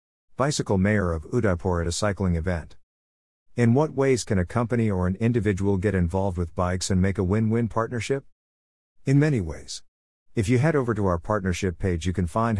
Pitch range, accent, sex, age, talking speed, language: 85-115 Hz, American, male, 50-69, 190 wpm, English